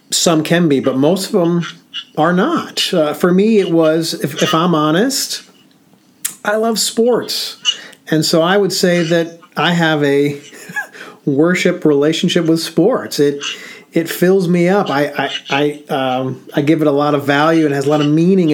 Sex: male